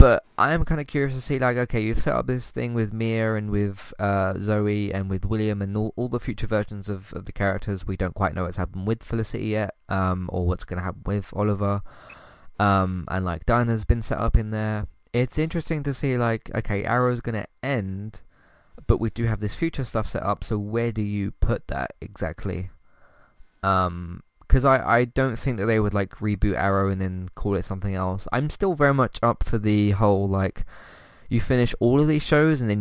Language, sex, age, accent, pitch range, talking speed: English, male, 20-39, British, 95-115 Hz, 220 wpm